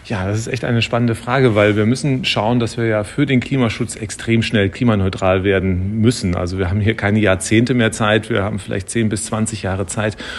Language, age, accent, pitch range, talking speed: German, 40-59, German, 105-120 Hz, 220 wpm